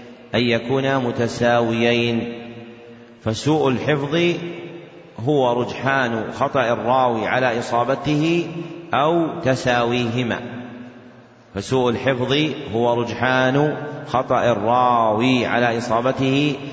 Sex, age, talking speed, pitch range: male, 30-49, 75 wpm, 120-135 Hz